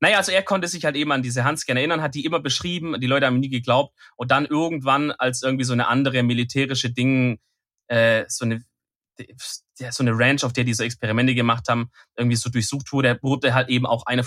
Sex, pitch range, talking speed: male, 115-140 Hz, 220 wpm